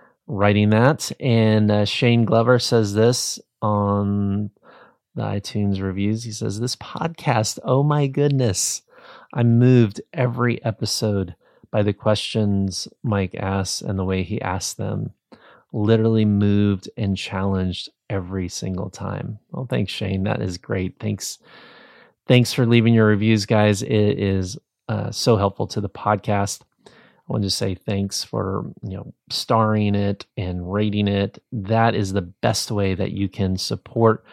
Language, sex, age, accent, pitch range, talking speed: English, male, 30-49, American, 100-125 Hz, 150 wpm